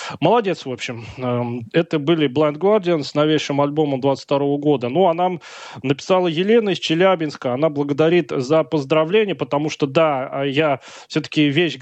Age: 20-39